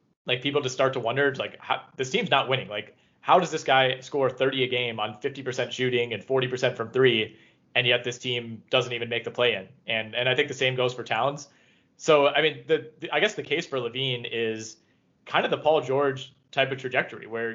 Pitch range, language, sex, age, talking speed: 120-140 Hz, English, male, 20-39, 230 wpm